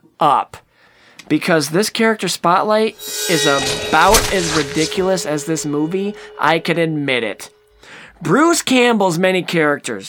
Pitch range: 150-205 Hz